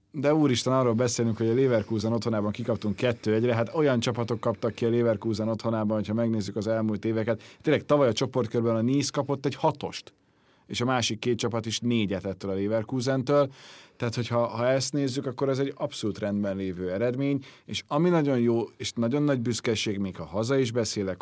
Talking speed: 190 wpm